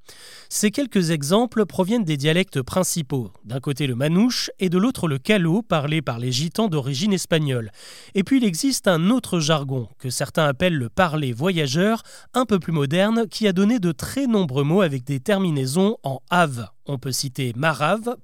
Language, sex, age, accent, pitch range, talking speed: French, male, 30-49, French, 145-200 Hz, 195 wpm